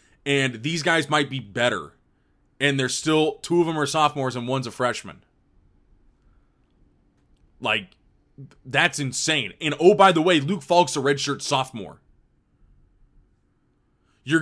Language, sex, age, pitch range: English, male, 20-39, 110-150 Hz